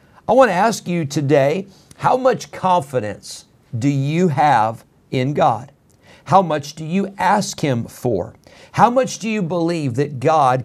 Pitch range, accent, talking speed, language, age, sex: 135-185 Hz, American, 160 wpm, English, 50-69, male